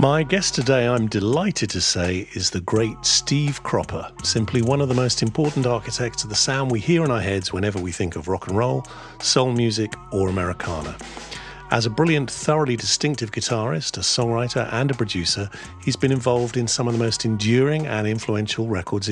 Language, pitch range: English, 100-125 Hz